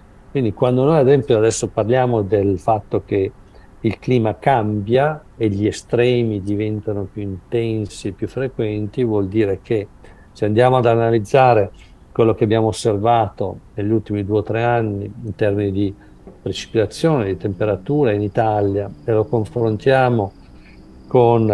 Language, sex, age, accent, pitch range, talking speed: Italian, male, 50-69, native, 105-125 Hz, 140 wpm